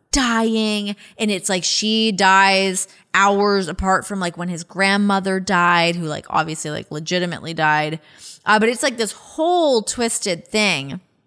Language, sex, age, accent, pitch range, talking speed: English, female, 20-39, American, 180-240 Hz, 150 wpm